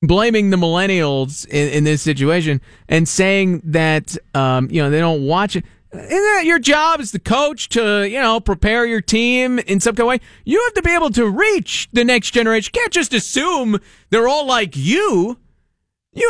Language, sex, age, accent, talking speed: English, male, 40-59, American, 195 wpm